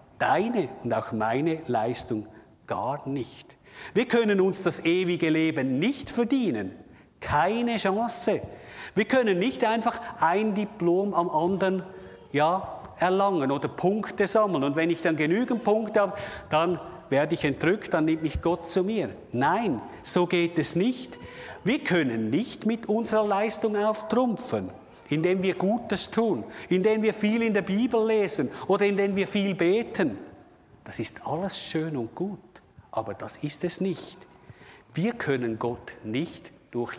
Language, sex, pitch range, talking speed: German, male, 140-205 Hz, 150 wpm